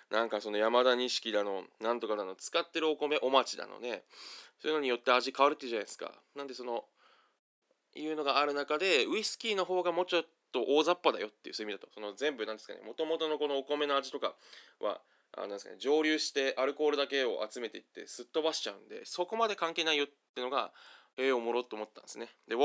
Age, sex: 20-39, male